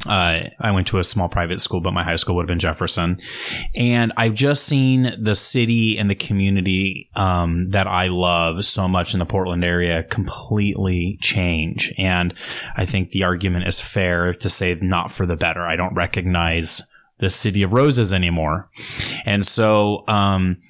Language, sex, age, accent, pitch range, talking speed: English, male, 20-39, American, 90-100 Hz, 175 wpm